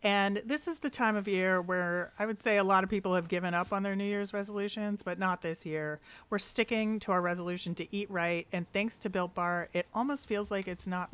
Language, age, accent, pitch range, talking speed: English, 30-49, American, 170-205 Hz, 250 wpm